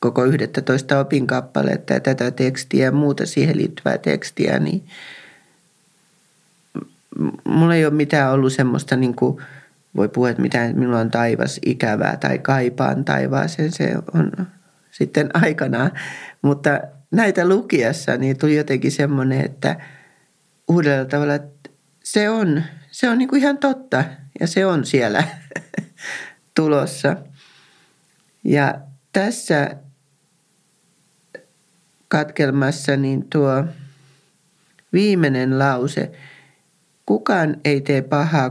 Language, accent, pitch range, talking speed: Finnish, native, 135-170 Hz, 115 wpm